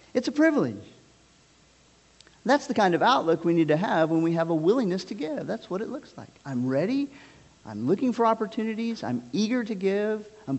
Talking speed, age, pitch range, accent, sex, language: 200 wpm, 50-69, 145-225 Hz, American, male, English